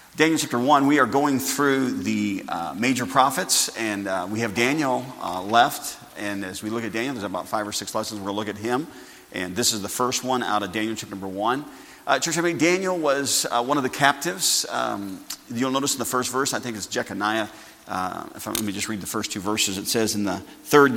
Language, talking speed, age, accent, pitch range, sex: English, 240 wpm, 40-59, American, 100-125 Hz, male